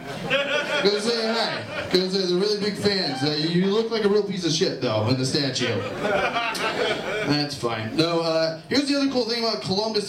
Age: 20-39